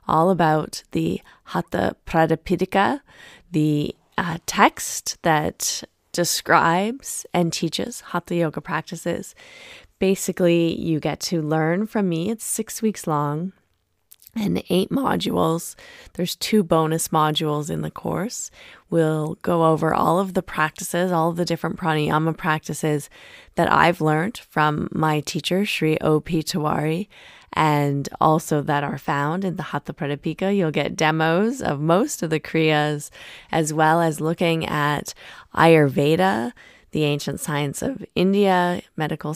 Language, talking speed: English, 135 wpm